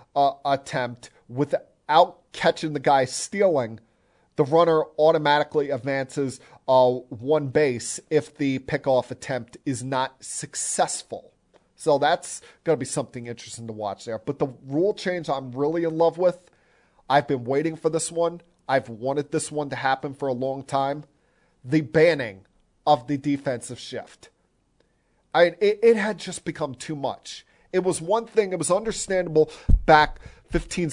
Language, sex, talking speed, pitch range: English, male, 155 wpm, 130-155 Hz